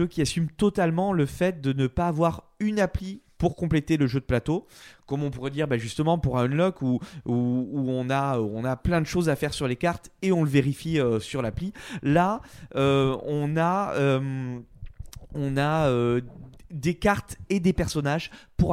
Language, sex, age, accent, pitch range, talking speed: French, male, 20-39, French, 135-180 Hz, 200 wpm